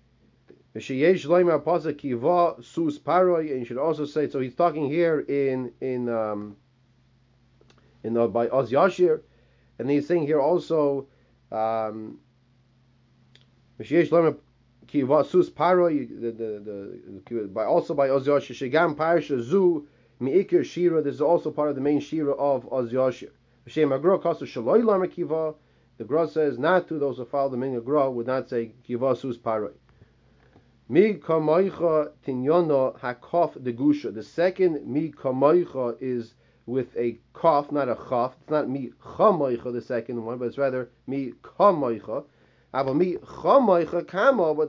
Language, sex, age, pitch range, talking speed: English, male, 30-49, 125-160 Hz, 105 wpm